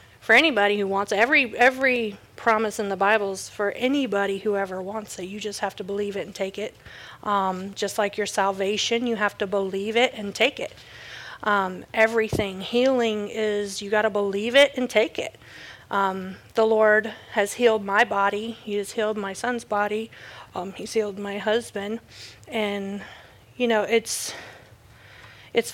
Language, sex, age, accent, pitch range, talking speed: English, female, 40-59, American, 200-235 Hz, 175 wpm